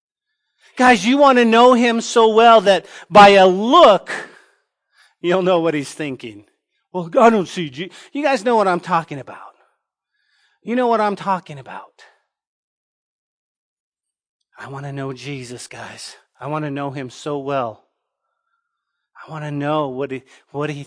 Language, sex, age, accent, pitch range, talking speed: English, male, 40-59, American, 175-245 Hz, 165 wpm